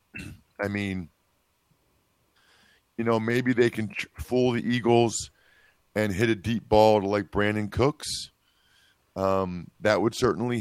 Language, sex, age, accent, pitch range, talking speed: English, male, 50-69, American, 95-115 Hz, 130 wpm